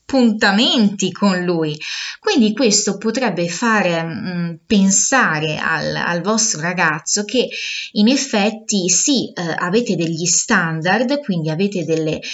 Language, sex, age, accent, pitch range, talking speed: Italian, female, 20-39, native, 180-230 Hz, 110 wpm